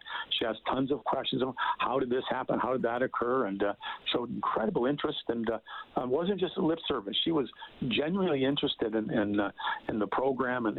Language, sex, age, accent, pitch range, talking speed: English, male, 50-69, American, 110-130 Hz, 205 wpm